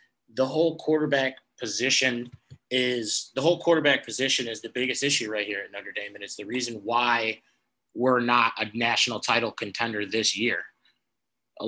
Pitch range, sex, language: 110-135 Hz, male, English